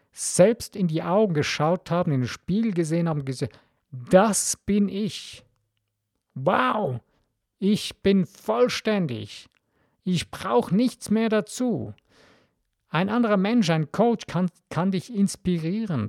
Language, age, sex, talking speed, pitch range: German, 50-69, male, 125 wpm, 145-205 Hz